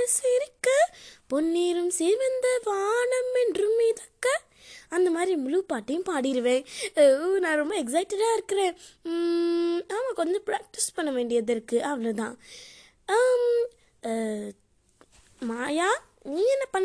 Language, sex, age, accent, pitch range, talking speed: Tamil, female, 20-39, native, 295-425 Hz, 40 wpm